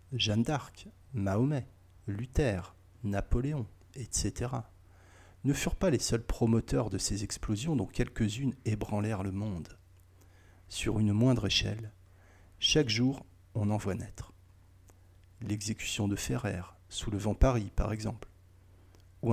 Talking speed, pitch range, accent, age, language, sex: 125 wpm, 95-125 Hz, French, 40-59, French, male